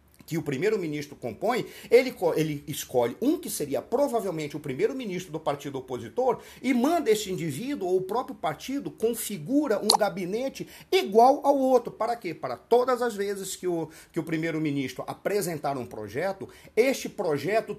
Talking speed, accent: 150 wpm, Brazilian